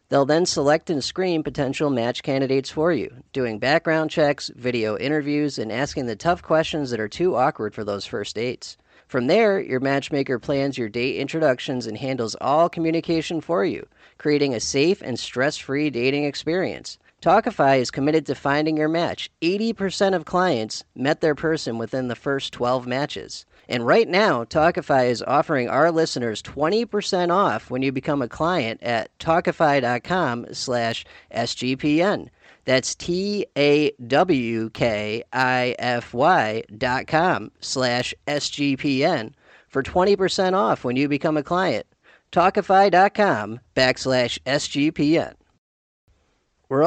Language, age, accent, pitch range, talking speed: English, 40-59, American, 130-160 Hz, 135 wpm